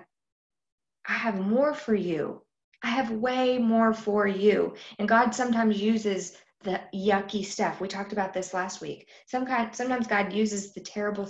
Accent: American